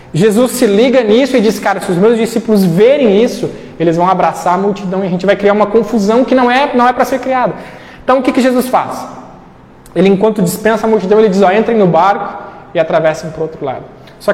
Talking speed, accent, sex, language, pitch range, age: 240 wpm, Brazilian, male, Portuguese, 175-225 Hz, 20-39